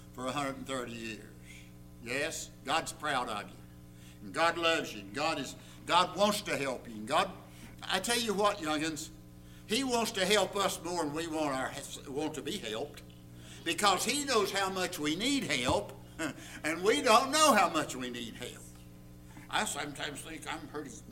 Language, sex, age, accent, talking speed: English, male, 60-79, American, 180 wpm